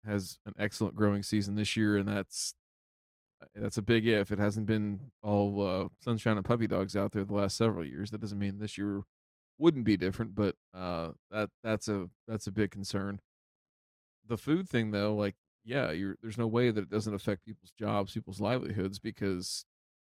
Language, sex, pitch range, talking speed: English, male, 95-110 Hz, 190 wpm